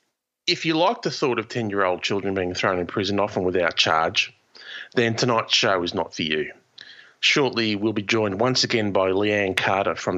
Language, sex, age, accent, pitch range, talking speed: English, male, 30-49, Australian, 95-115 Hz, 190 wpm